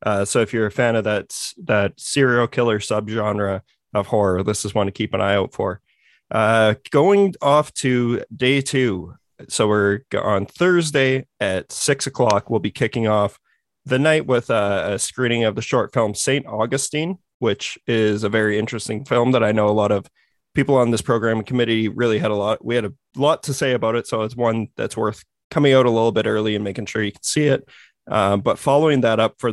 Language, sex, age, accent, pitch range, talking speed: English, male, 20-39, American, 105-125 Hz, 215 wpm